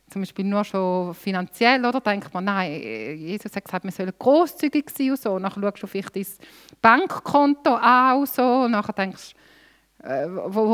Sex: female